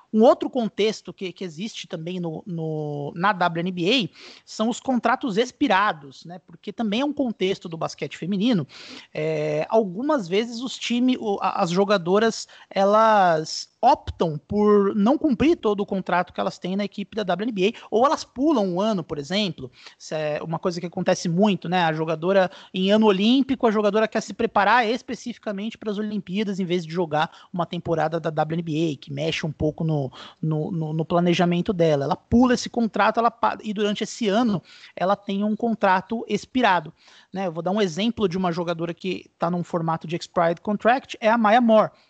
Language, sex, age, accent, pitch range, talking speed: Portuguese, male, 20-39, Brazilian, 170-220 Hz, 180 wpm